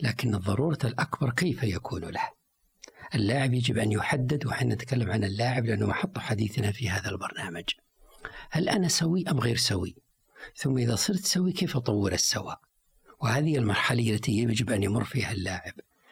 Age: 60-79